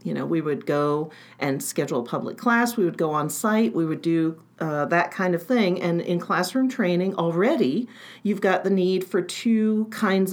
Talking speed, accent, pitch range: 205 wpm, American, 155-200 Hz